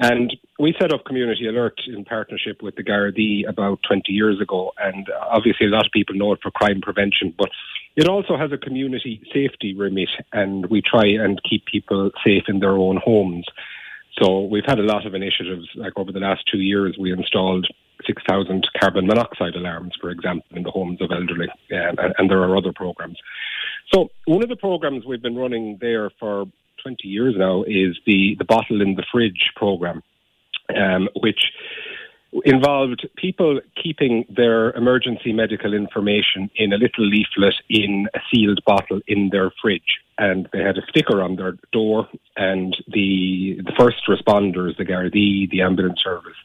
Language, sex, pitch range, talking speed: English, male, 95-120 Hz, 175 wpm